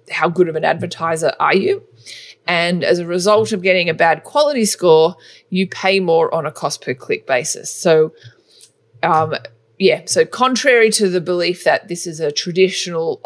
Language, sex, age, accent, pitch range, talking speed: English, female, 20-39, Australian, 160-215 Hz, 175 wpm